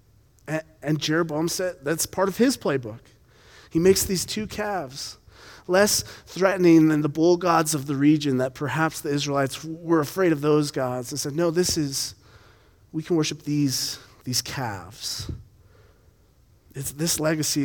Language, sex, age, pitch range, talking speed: English, male, 30-49, 110-150 Hz, 155 wpm